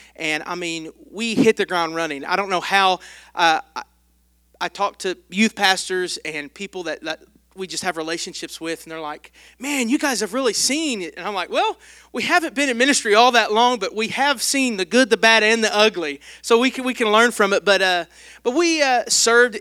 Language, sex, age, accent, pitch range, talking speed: English, male, 40-59, American, 165-230 Hz, 225 wpm